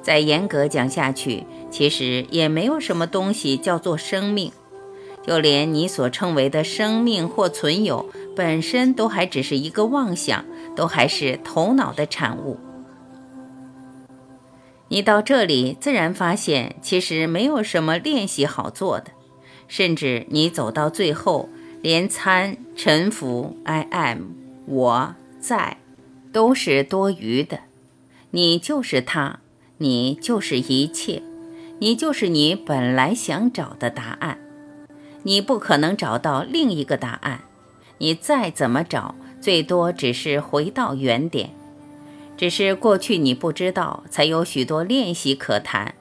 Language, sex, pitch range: Chinese, female, 130-205 Hz